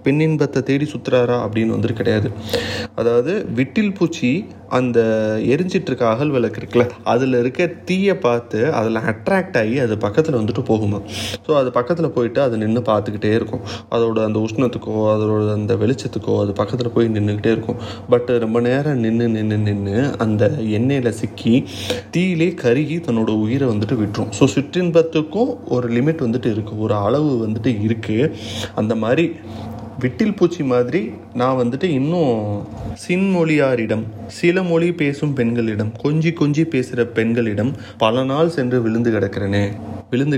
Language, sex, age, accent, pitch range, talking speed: Tamil, male, 30-49, native, 110-135 Hz, 135 wpm